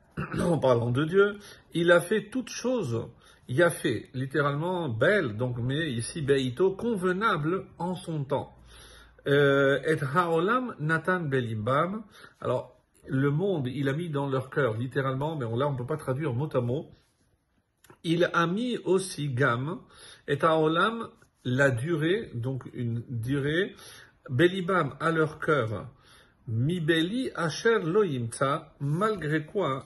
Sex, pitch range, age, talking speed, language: male, 130-175 Hz, 50-69, 135 wpm, French